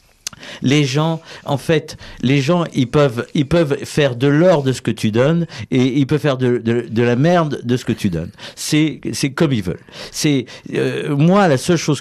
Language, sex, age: French, male, 50-69